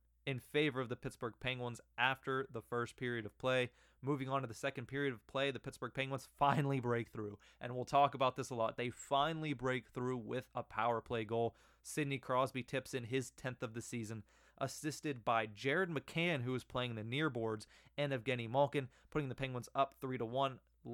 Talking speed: 200 wpm